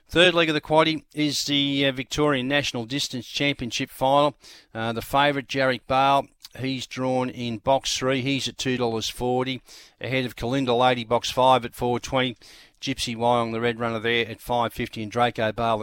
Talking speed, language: 185 wpm, English